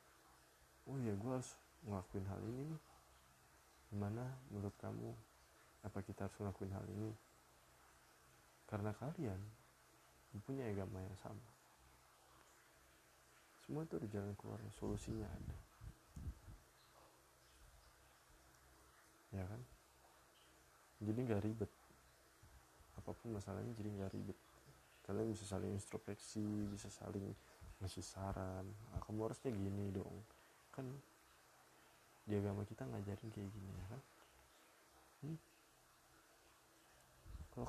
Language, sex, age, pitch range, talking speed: Indonesian, male, 20-39, 80-110 Hz, 95 wpm